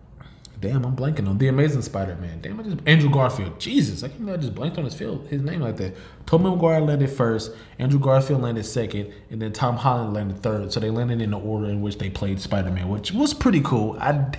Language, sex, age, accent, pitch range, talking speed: English, male, 20-39, American, 105-140 Hz, 230 wpm